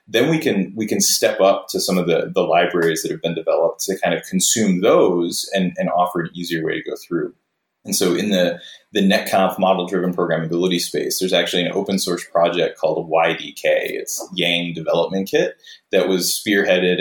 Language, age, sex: English, 20-39, male